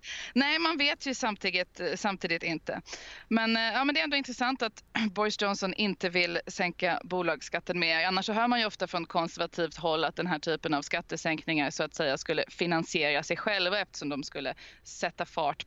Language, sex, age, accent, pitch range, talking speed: Swedish, female, 20-39, native, 165-210 Hz, 185 wpm